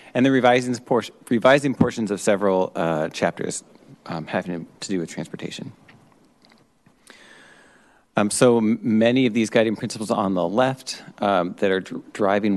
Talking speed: 135 wpm